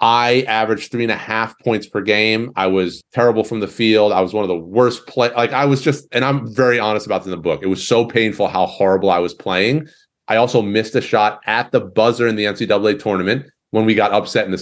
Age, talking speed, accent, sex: 30-49, 255 wpm, American, male